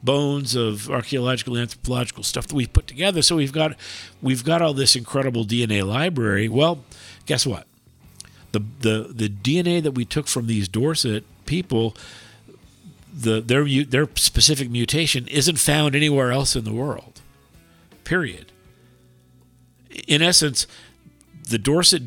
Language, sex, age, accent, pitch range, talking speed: English, male, 50-69, American, 105-140 Hz, 135 wpm